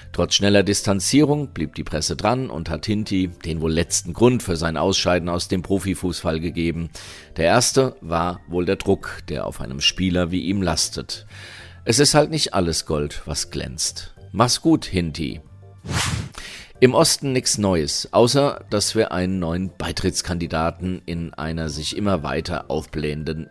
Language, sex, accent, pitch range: German, male, German, 80-100 Hz